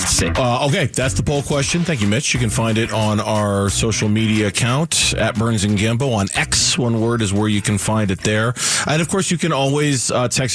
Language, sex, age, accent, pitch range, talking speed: English, male, 40-59, American, 105-140 Hz, 235 wpm